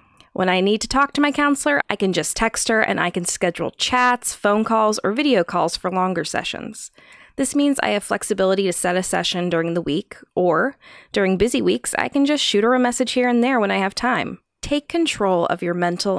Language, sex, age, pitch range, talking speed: English, female, 20-39, 180-245 Hz, 225 wpm